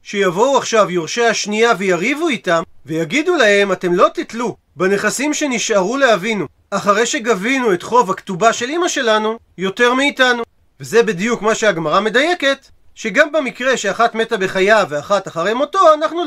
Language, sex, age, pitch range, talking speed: Hebrew, male, 40-59, 190-260 Hz, 140 wpm